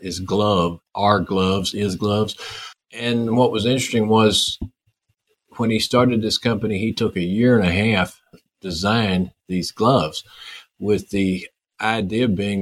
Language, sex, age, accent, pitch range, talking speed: English, male, 50-69, American, 95-110 Hz, 145 wpm